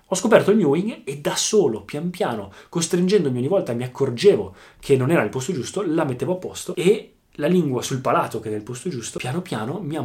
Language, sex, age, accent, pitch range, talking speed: Italian, male, 20-39, native, 110-145 Hz, 225 wpm